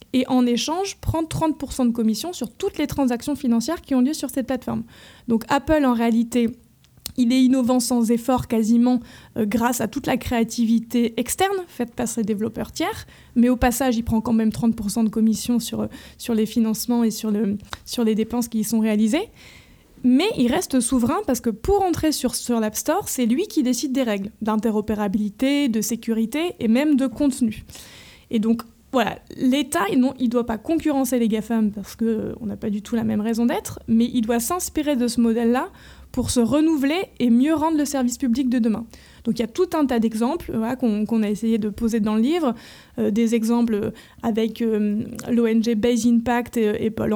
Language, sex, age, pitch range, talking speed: French, female, 20-39, 225-260 Hz, 205 wpm